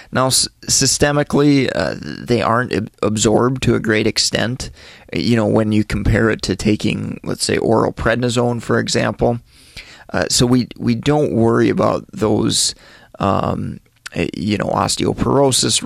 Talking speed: 140 wpm